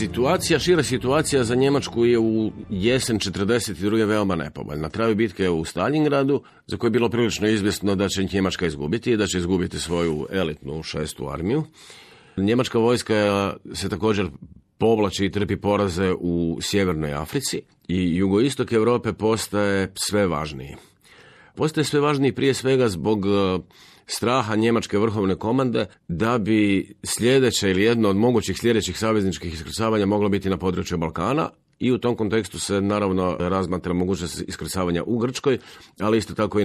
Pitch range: 95-115 Hz